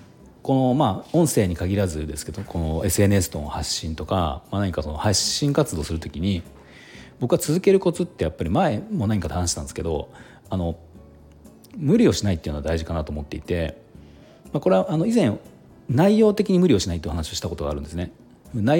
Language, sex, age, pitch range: Japanese, male, 40-59, 80-115 Hz